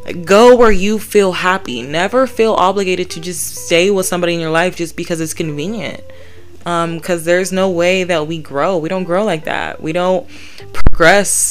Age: 20-39